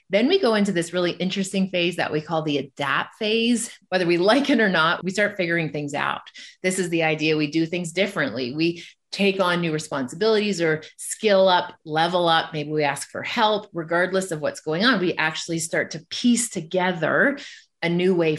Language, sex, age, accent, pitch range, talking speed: English, female, 30-49, American, 160-200 Hz, 200 wpm